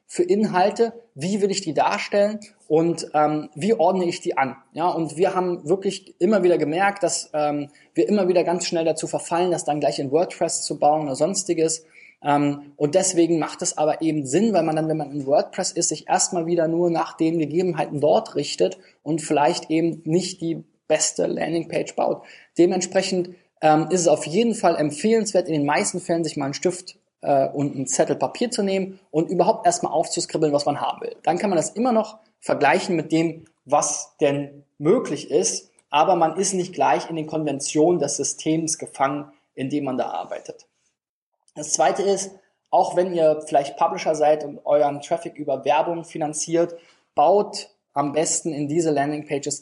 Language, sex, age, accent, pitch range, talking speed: German, male, 20-39, German, 150-180 Hz, 185 wpm